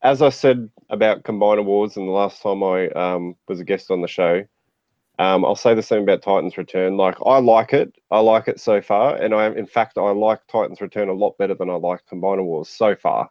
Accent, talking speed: Australian, 240 wpm